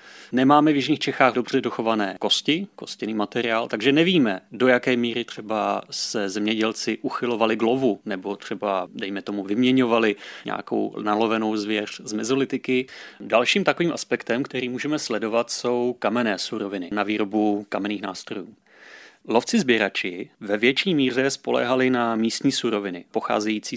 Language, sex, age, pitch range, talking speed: Czech, male, 30-49, 105-135 Hz, 135 wpm